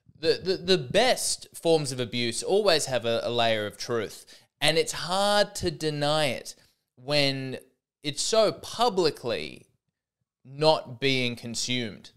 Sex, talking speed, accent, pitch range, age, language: male, 135 wpm, Australian, 130-185 Hz, 20-39, English